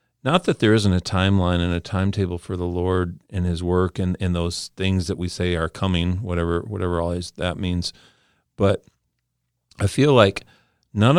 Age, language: 40-59, English